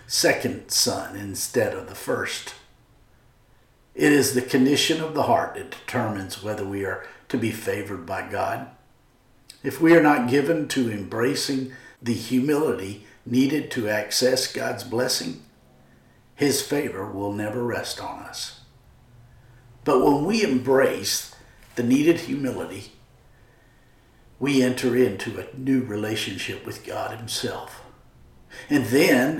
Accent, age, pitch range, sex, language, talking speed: American, 50-69, 105-130 Hz, male, English, 125 wpm